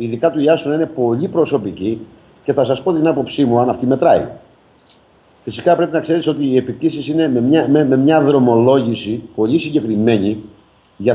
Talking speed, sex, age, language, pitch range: 180 wpm, male, 50-69, Greek, 110-160 Hz